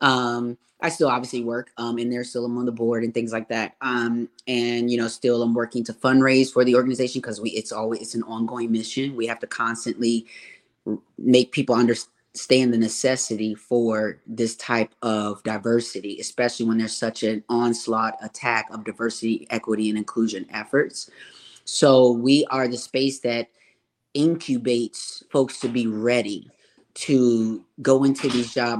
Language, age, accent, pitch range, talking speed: English, 30-49, American, 115-130 Hz, 165 wpm